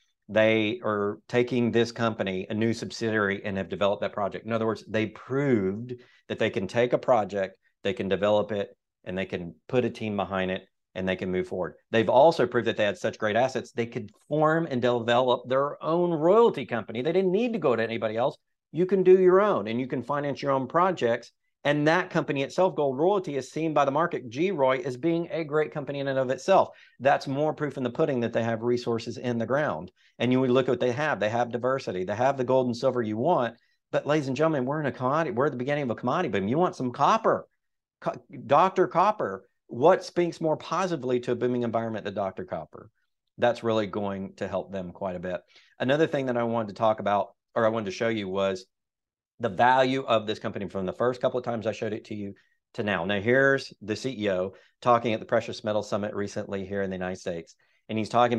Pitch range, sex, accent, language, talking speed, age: 105-135 Hz, male, American, English, 235 wpm, 40-59